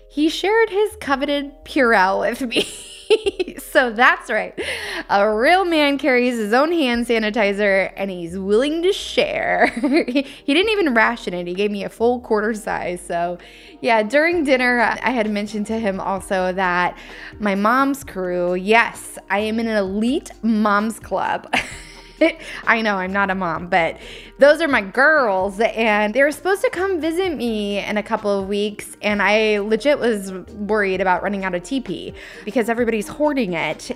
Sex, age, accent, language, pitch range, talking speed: female, 10-29, American, English, 195-250 Hz, 170 wpm